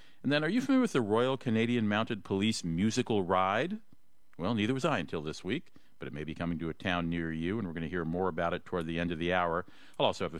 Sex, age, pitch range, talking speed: male, 50-69, 85-125 Hz, 275 wpm